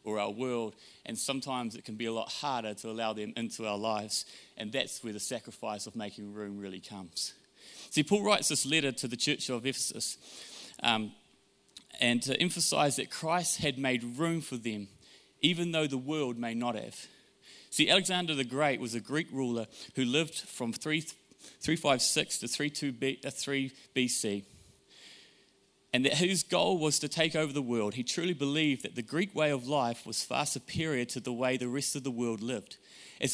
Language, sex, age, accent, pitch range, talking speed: English, male, 30-49, Australian, 115-150 Hz, 185 wpm